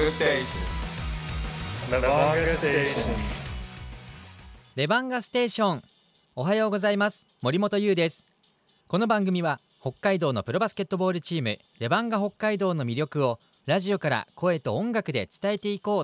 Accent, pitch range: native, 125-200 Hz